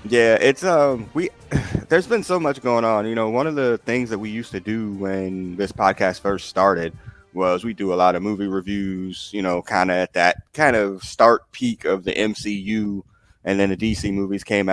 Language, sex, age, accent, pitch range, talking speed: English, male, 30-49, American, 95-115 Hz, 215 wpm